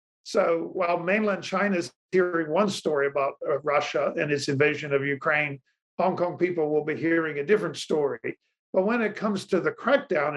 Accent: American